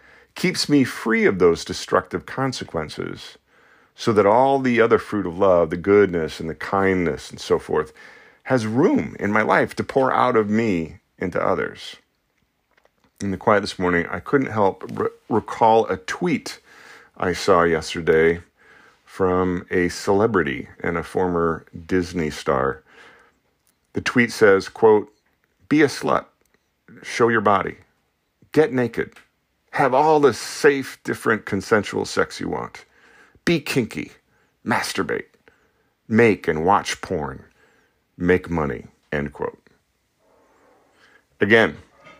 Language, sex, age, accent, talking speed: English, male, 40-59, American, 130 wpm